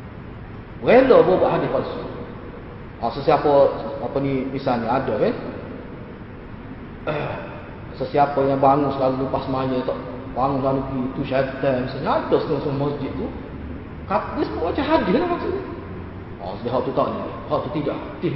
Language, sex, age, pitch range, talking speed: Malay, male, 30-49, 135-210 Hz, 130 wpm